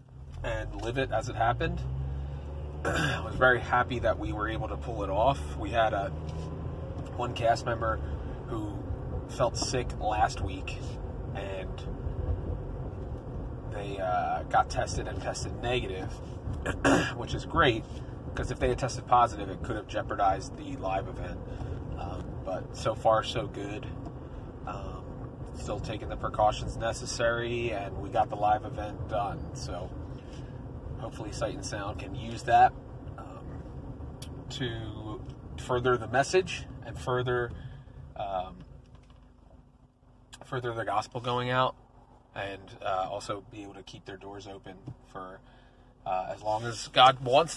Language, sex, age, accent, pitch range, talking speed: English, male, 30-49, American, 100-125 Hz, 140 wpm